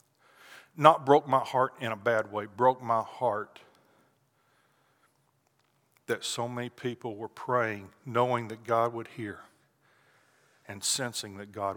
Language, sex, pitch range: English, male, 110-130 Hz